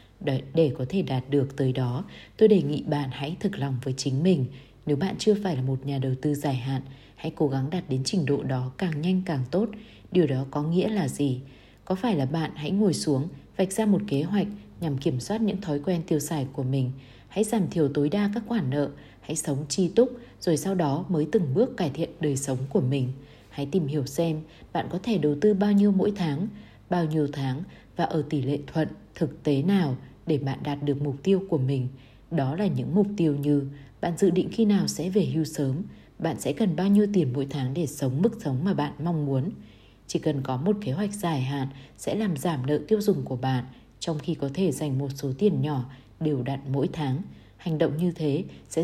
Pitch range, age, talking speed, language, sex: 135-185 Hz, 20-39, 230 wpm, Vietnamese, female